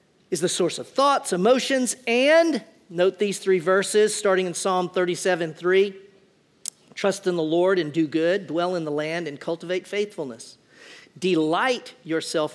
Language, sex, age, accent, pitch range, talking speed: English, male, 40-59, American, 145-185 Hz, 150 wpm